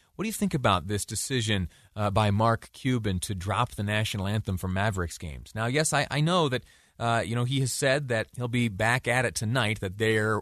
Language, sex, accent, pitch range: English, male, American, 95-125 Hz